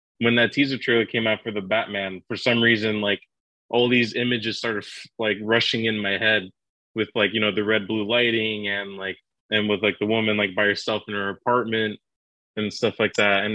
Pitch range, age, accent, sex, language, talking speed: 100-115 Hz, 20-39, American, male, English, 215 wpm